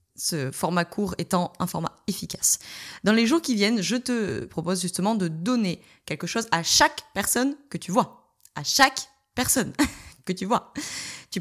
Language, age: French, 20-39